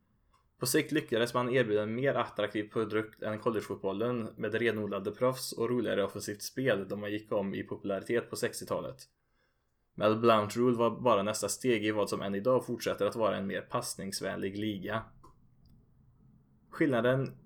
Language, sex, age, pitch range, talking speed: Swedish, male, 20-39, 105-125 Hz, 160 wpm